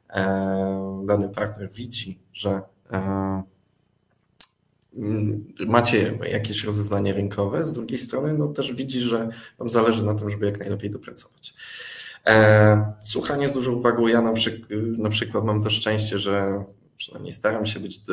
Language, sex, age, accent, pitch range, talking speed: Polish, male, 20-39, native, 105-120 Hz, 140 wpm